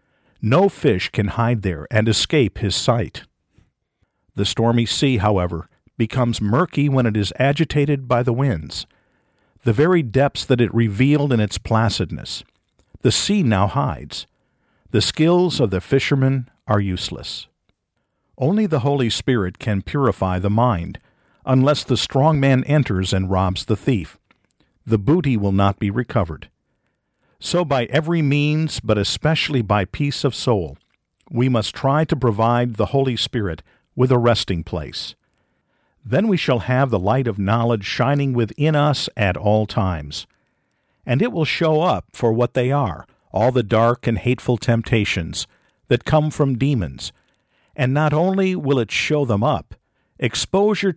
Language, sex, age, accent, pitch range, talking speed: English, male, 50-69, American, 105-140 Hz, 150 wpm